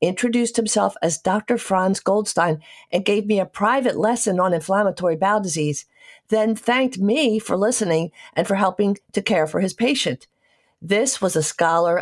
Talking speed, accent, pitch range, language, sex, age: 165 wpm, American, 170-220 Hz, English, female, 50-69